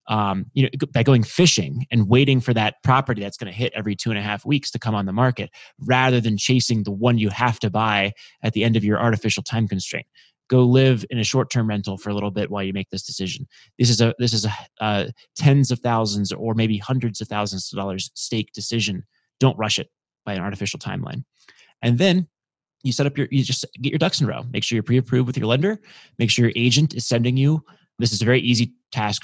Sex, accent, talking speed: male, American, 240 wpm